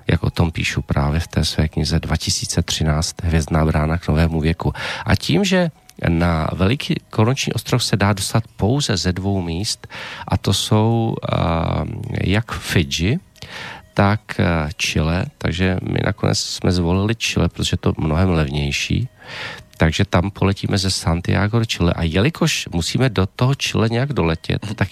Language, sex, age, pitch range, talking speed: Slovak, male, 40-59, 85-115 Hz, 155 wpm